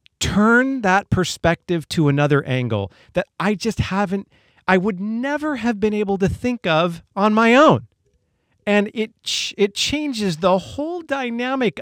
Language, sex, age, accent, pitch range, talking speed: English, male, 40-59, American, 125-200 Hz, 150 wpm